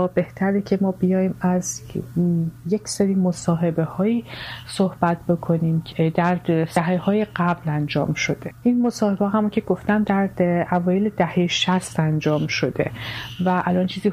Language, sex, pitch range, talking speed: Persian, female, 160-185 Hz, 135 wpm